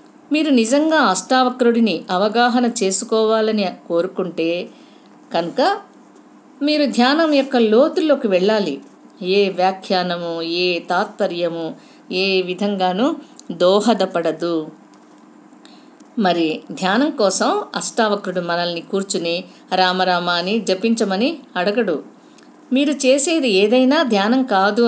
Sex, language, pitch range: female, Telugu, 180-255 Hz